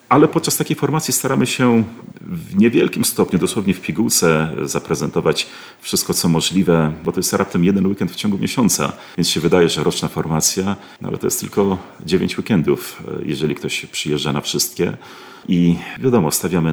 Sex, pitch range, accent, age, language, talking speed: male, 75-90 Hz, native, 40-59, Polish, 165 wpm